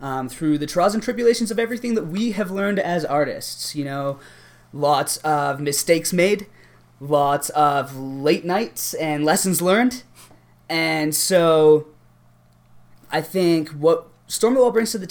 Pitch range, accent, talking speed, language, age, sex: 125-165 Hz, American, 145 wpm, English, 20-39, male